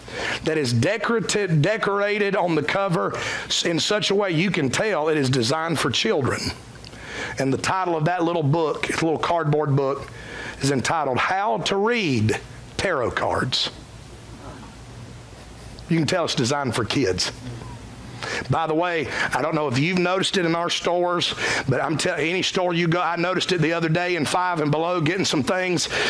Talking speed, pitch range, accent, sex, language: 175 wpm, 130-180 Hz, American, male, English